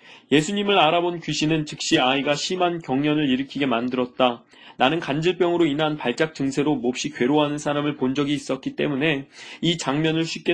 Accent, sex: native, male